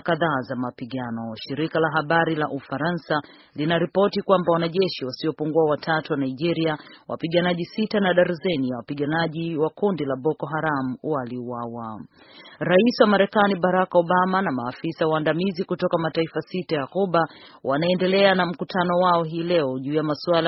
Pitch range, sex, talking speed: 150-175 Hz, female, 140 wpm